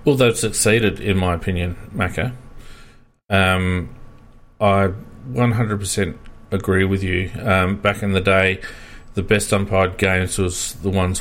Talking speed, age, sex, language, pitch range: 135 wpm, 40-59, male, English, 95-110 Hz